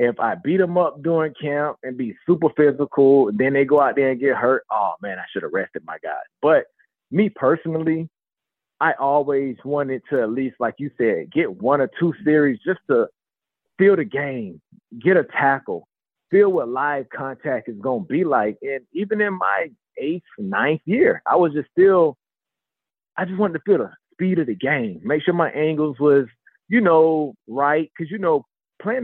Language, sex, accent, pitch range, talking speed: English, male, American, 135-175 Hz, 195 wpm